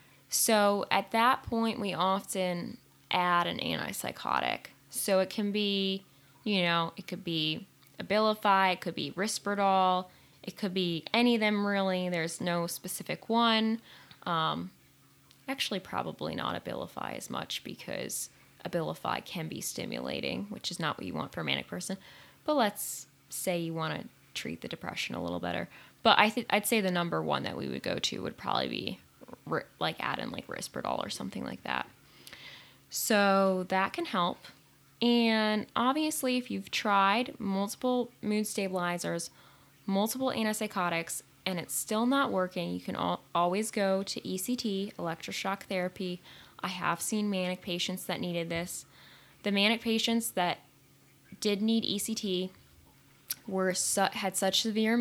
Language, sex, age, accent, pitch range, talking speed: English, female, 10-29, American, 175-215 Hz, 150 wpm